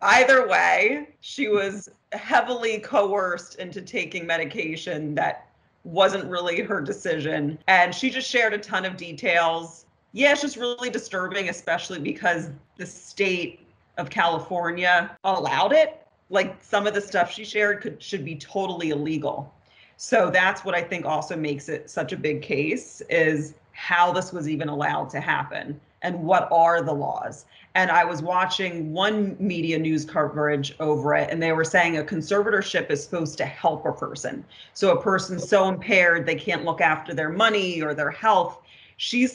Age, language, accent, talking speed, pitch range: 30-49, English, American, 165 wpm, 155-195 Hz